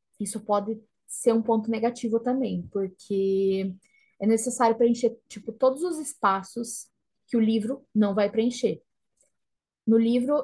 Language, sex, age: Portuguese, female, 20-39